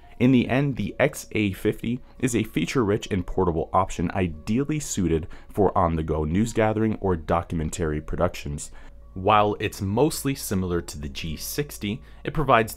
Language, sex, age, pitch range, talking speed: English, male, 30-49, 85-110 Hz, 135 wpm